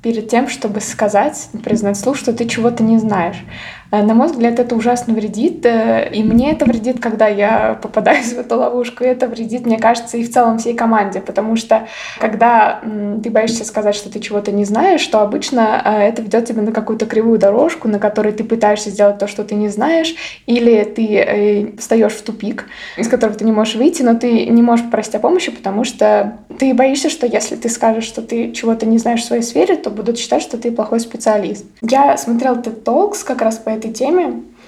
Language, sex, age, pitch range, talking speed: Russian, female, 20-39, 210-240 Hz, 200 wpm